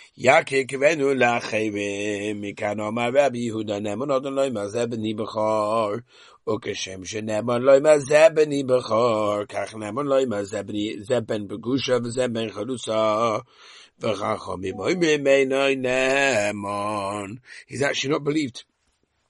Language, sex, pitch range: English, male, 105-135 Hz